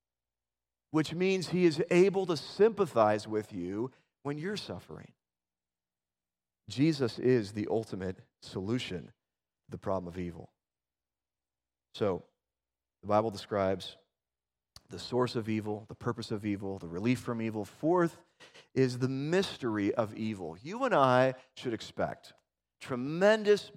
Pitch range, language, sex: 90-150 Hz, English, male